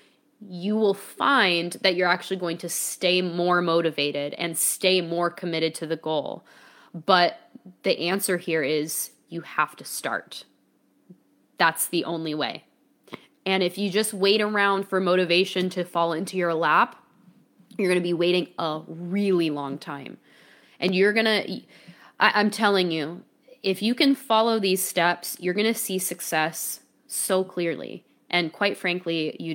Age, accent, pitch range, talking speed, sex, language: 10-29, American, 170-200 Hz, 155 wpm, female, English